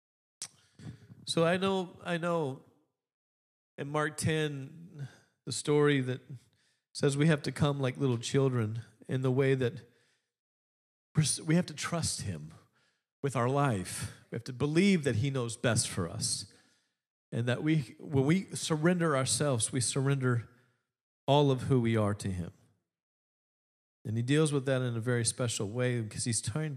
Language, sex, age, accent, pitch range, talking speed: English, male, 40-59, American, 110-145 Hz, 155 wpm